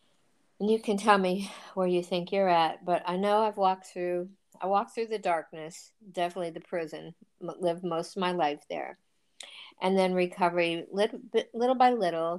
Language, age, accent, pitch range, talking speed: English, 50-69, American, 155-190 Hz, 170 wpm